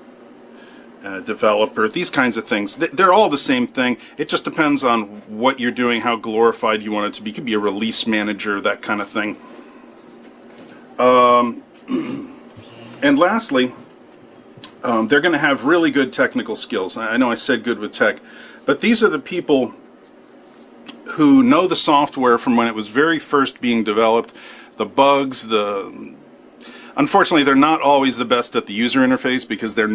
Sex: male